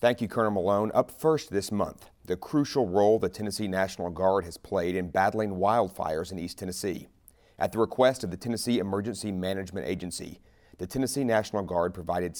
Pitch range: 95-115 Hz